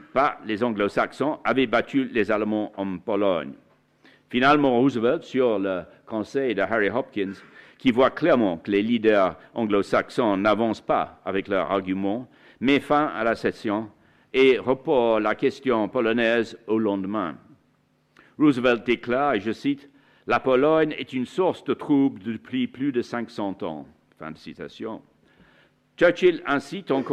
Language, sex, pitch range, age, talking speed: French, male, 110-140 Hz, 60-79, 140 wpm